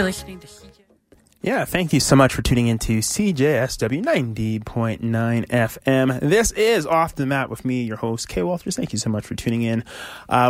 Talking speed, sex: 175 wpm, male